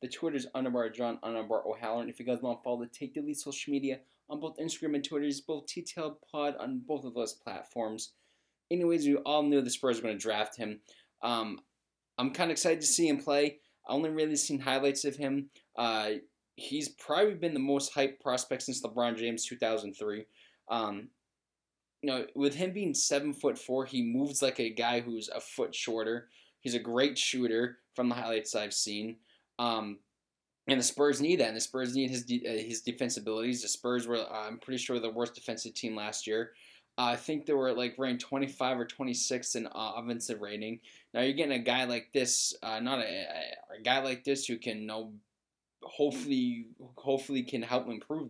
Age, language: 20-39, English